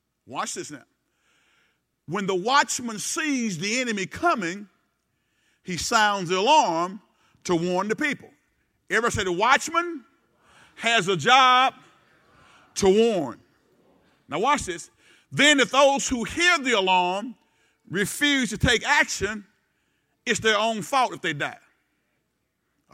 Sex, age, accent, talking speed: male, 50-69, American, 130 wpm